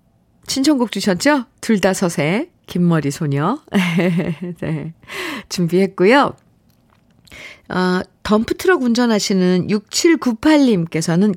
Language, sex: Korean, female